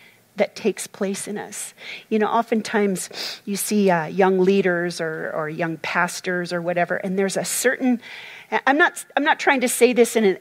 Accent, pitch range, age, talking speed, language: American, 185-235 Hz, 40-59, 190 wpm, English